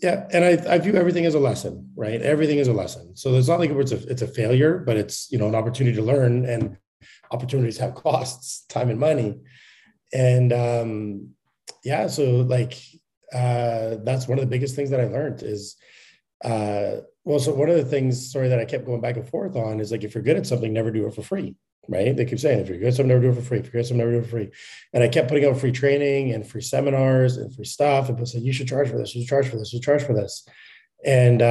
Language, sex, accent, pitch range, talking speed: English, male, American, 115-140 Hz, 265 wpm